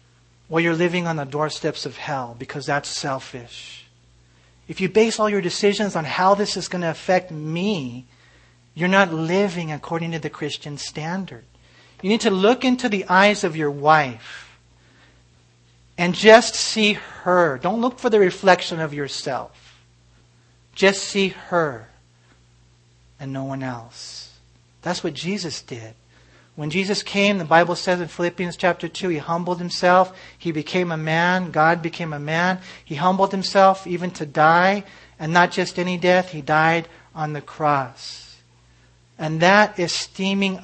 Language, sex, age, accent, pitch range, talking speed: English, male, 40-59, American, 130-180 Hz, 155 wpm